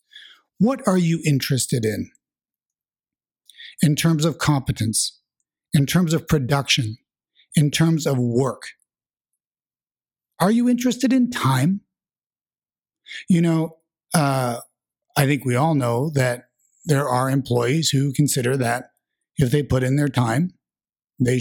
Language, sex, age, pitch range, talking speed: English, male, 60-79, 130-170 Hz, 125 wpm